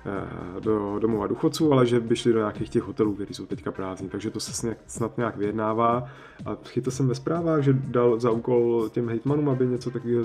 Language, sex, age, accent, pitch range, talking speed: Czech, male, 20-39, native, 110-135 Hz, 210 wpm